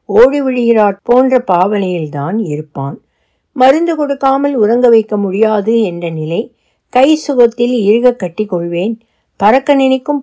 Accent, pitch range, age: native, 185-250 Hz, 60-79